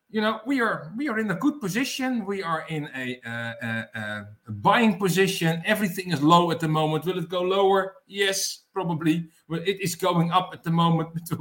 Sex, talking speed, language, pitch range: male, 200 wpm, English, 145-190 Hz